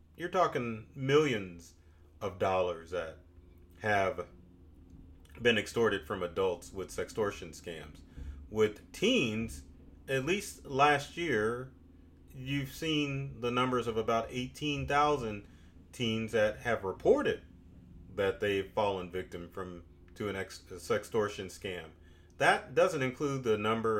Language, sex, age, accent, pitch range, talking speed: English, male, 30-49, American, 85-135 Hz, 120 wpm